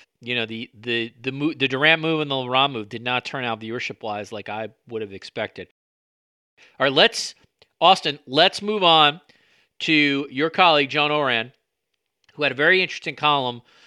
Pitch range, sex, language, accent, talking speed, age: 125-155 Hz, male, English, American, 180 wpm, 40-59